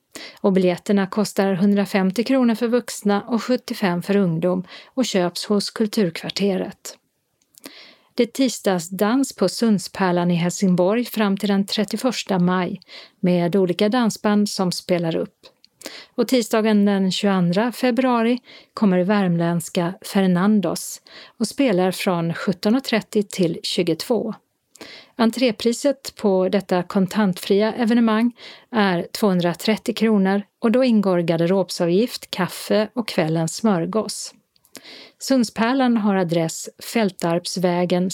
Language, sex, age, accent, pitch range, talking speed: Swedish, female, 40-59, native, 185-225 Hz, 105 wpm